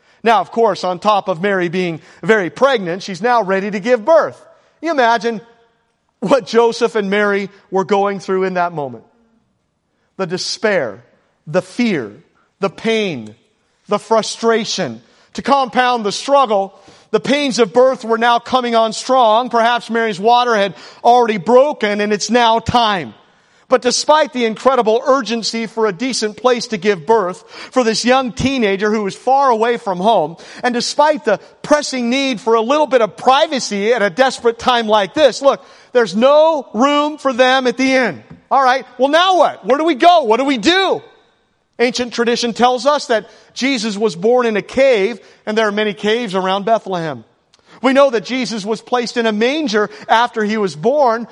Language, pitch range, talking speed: English, 205-255 Hz, 175 wpm